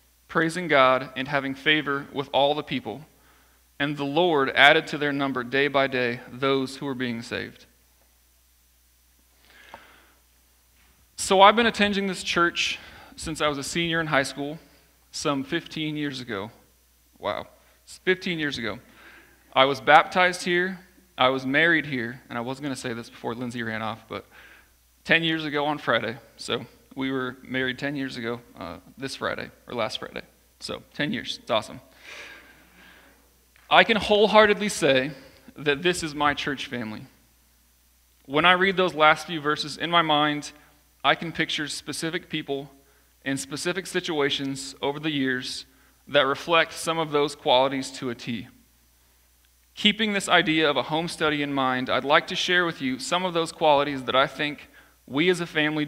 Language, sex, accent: English, male, American